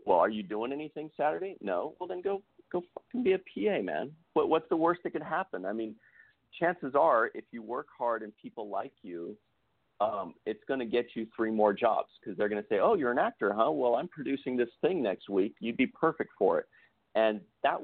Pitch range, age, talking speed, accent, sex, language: 105-140 Hz, 40-59, 230 wpm, American, male, English